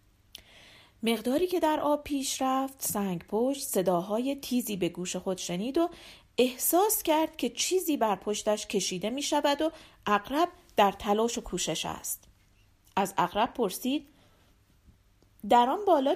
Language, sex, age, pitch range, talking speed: Persian, female, 40-59, 195-295 Hz, 135 wpm